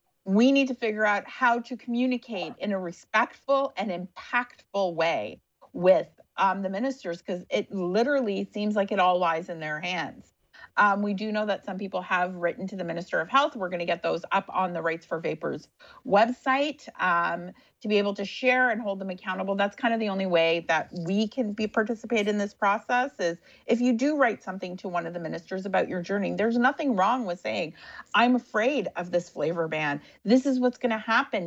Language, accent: English, American